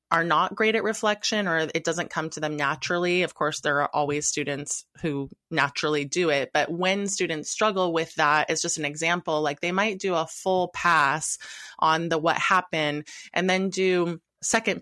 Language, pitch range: English, 145-175 Hz